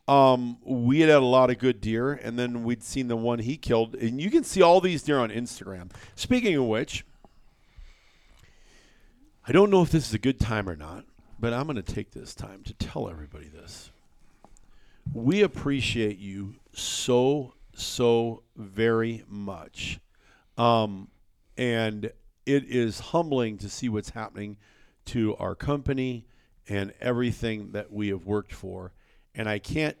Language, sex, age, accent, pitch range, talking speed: English, male, 50-69, American, 100-130 Hz, 160 wpm